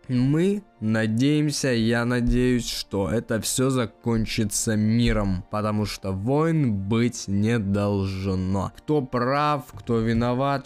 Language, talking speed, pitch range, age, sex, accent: Russian, 105 wpm, 105-130 Hz, 20-39, male, native